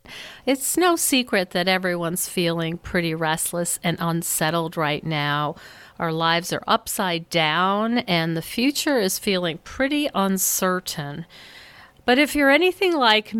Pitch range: 170-240 Hz